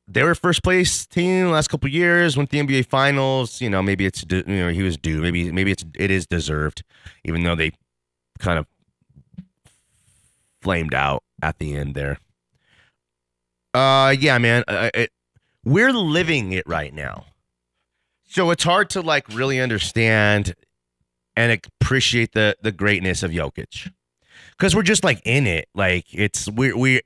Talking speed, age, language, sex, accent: 165 wpm, 30-49, English, male, American